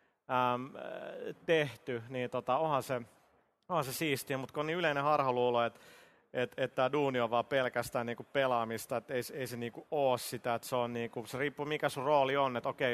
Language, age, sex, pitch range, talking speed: Finnish, 30-49, male, 120-140 Hz, 190 wpm